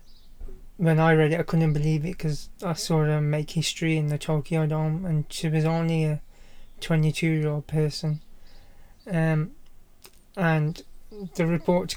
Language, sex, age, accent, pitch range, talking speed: English, male, 20-39, British, 150-165 Hz, 155 wpm